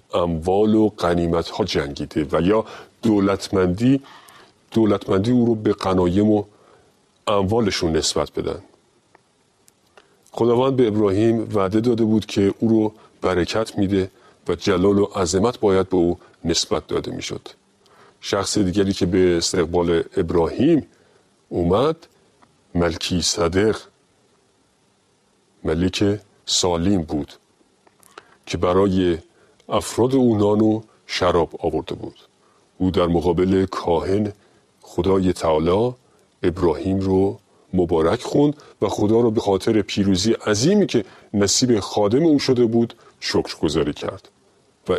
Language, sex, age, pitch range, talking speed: Persian, male, 50-69, 95-115 Hz, 110 wpm